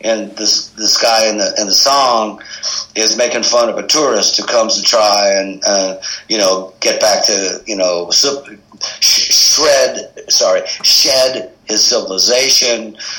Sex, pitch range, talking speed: male, 95-115 Hz, 155 wpm